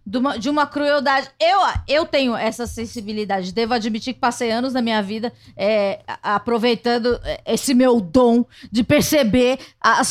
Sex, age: female, 20-39